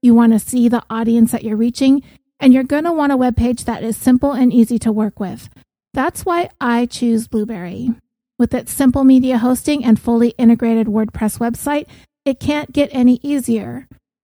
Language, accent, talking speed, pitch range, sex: English, American, 185 wpm, 225-265 Hz, female